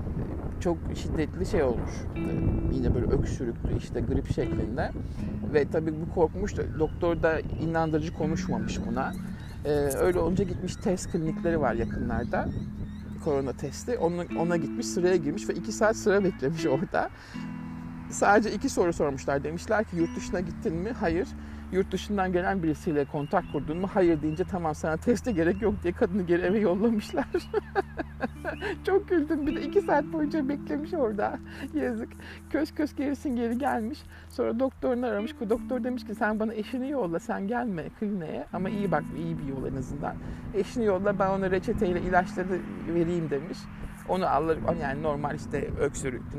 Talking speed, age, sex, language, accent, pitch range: 160 wpm, 50-69, male, Turkish, native, 160-215 Hz